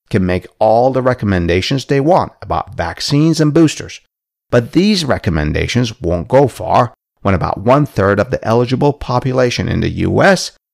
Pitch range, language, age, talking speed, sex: 90-135 Hz, English, 50-69, 150 wpm, male